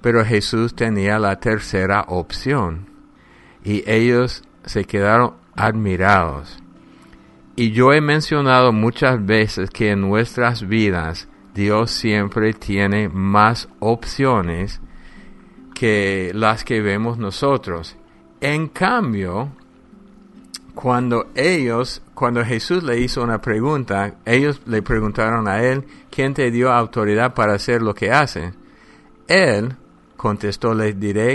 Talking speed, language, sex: 115 wpm, English, male